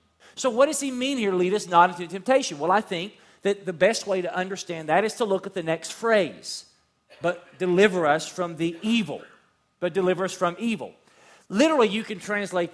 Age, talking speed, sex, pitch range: 40-59, 205 wpm, male, 180-235 Hz